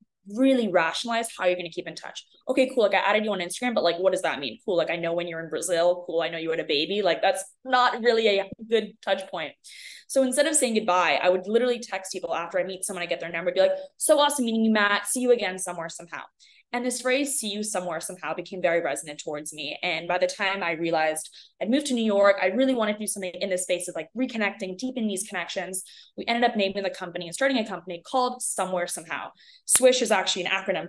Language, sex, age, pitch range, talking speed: English, female, 20-39, 180-255 Hz, 255 wpm